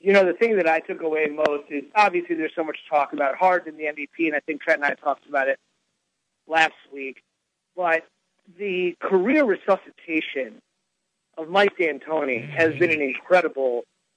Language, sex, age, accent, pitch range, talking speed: English, male, 40-59, American, 160-185 Hz, 175 wpm